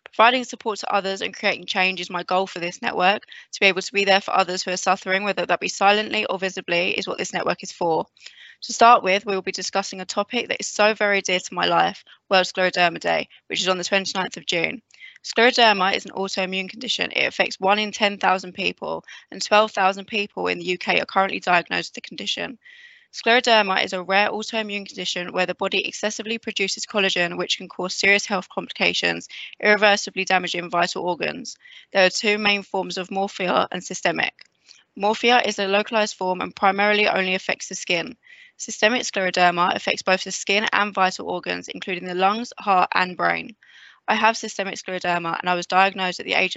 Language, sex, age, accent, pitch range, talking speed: English, female, 20-39, British, 185-210 Hz, 200 wpm